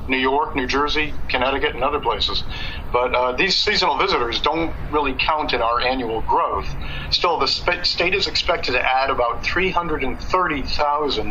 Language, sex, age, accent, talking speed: English, male, 50-69, American, 160 wpm